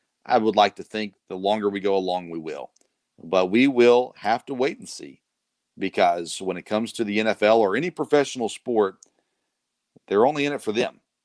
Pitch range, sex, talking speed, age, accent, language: 100-125 Hz, male, 195 wpm, 40-59, American, English